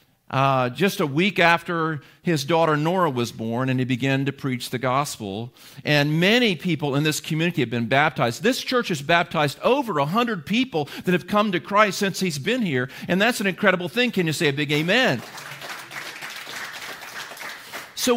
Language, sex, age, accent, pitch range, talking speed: English, male, 50-69, American, 150-215 Hz, 180 wpm